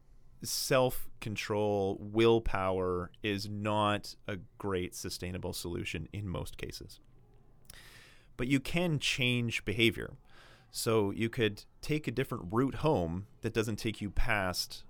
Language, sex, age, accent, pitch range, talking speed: English, male, 30-49, American, 95-125 Hz, 115 wpm